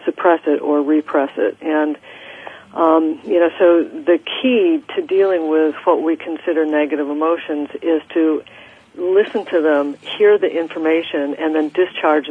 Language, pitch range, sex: English, 155-175 Hz, female